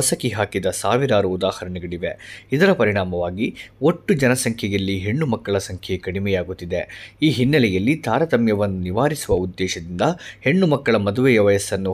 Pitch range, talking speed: 95-120 Hz, 95 wpm